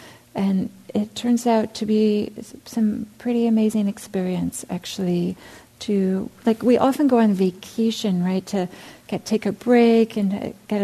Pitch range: 190-225 Hz